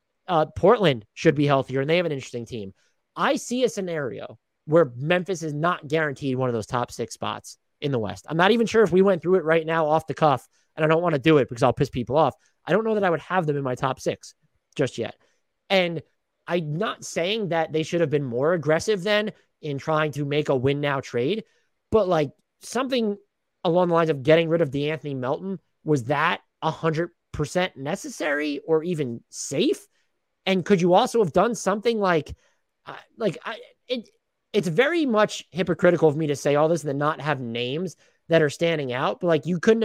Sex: male